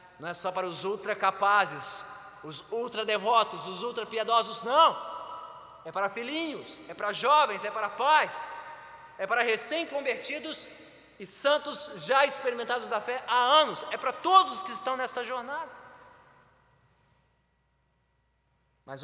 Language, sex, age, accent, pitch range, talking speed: Portuguese, male, 20-39, Brazilian, 125-195 Hz, 130 wpm